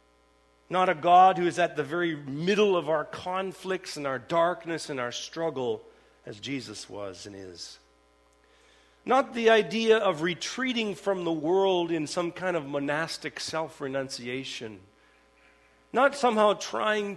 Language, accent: English, American